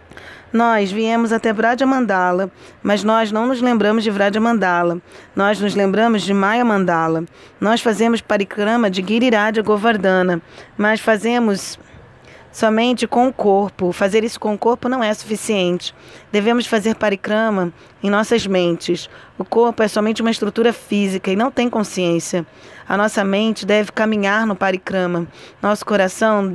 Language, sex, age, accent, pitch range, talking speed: Portuguese, female, 20-39, Brazilian, 190-225 Hz, 150 wpm